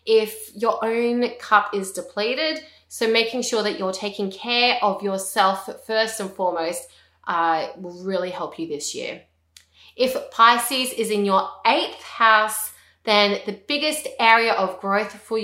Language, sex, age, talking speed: English, female, 20-39, 150 wpm